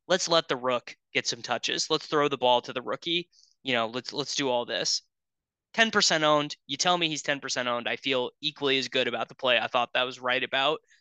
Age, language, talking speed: 20-39, English, 235 wpm